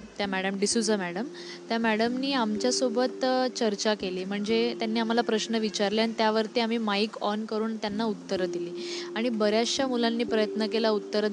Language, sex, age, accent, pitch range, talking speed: Marathi, female, 10-29, native, 205-240 Hz, 155 wpm